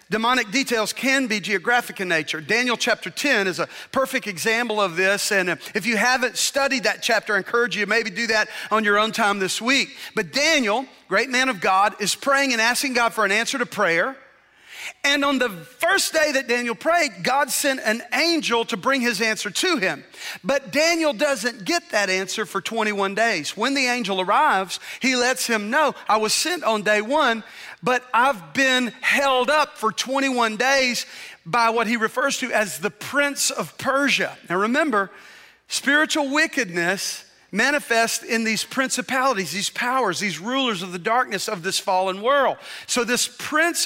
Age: 40-59